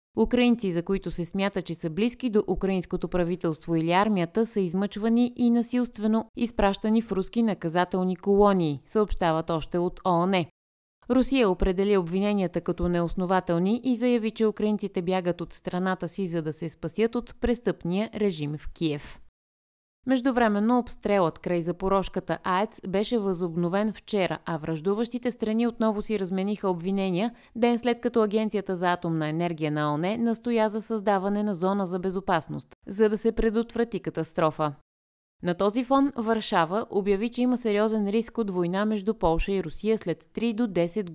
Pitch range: 175-220 Hz